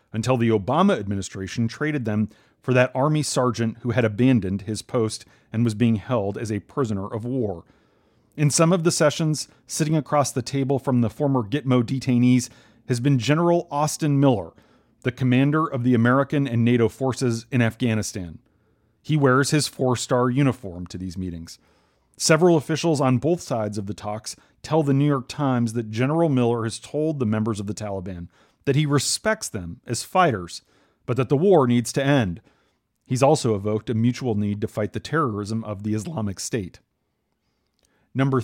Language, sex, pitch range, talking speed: English, male, 110-145 Hz, 175 wpm